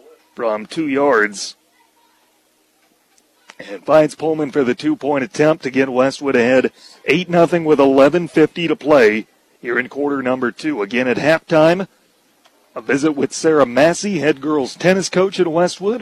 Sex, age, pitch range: male, 40-59, 140-175 Hz